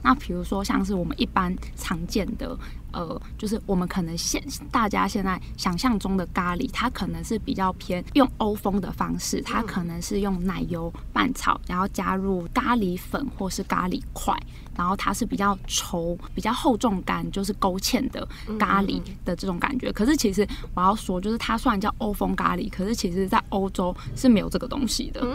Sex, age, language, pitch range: female, 20-39, Chinese, 190-240 Hz